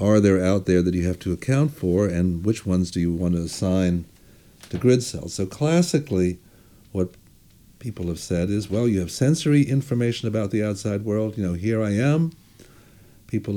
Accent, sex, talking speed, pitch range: American, male, 190 wpm, 90-115 Hz